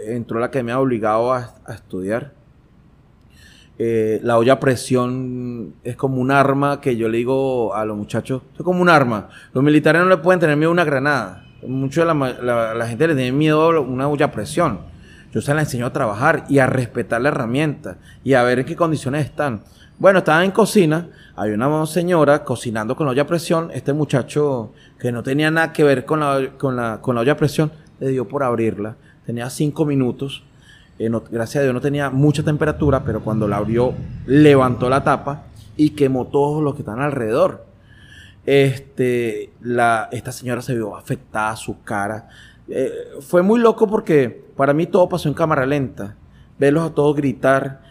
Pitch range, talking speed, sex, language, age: 120-150 Hz, 190 wpm, male, Spanish, 30-49